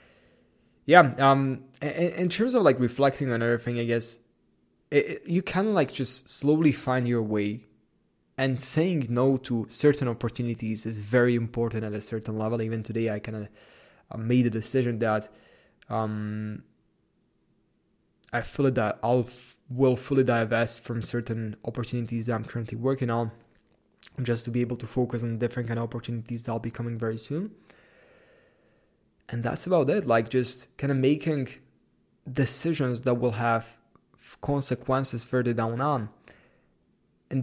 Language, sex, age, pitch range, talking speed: English, male, 20-39, 115-135 Hz, 150 wpm